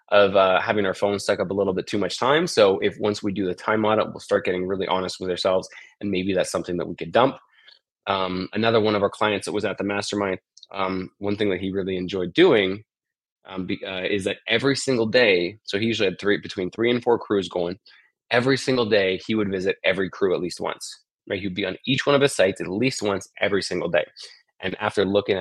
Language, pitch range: English, 95-110 Hz